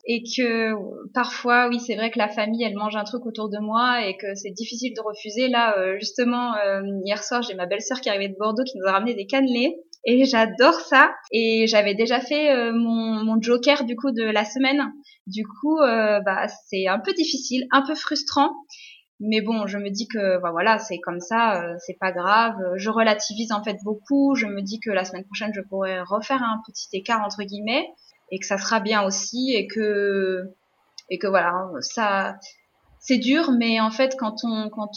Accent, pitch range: French, 195-245 Hz